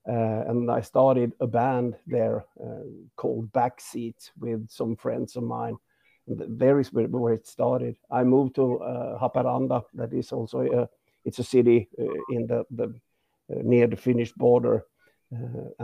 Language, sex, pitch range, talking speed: English, male, 120-130 Hz, 165 wpm